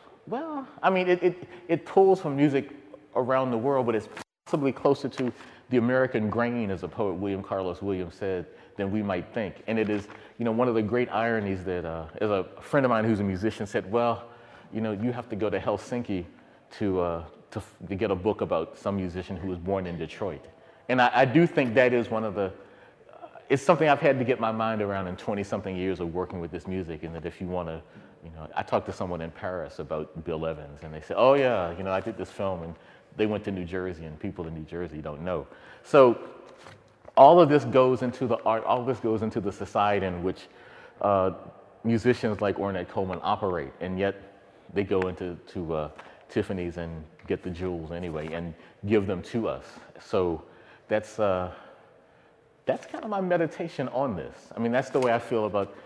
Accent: American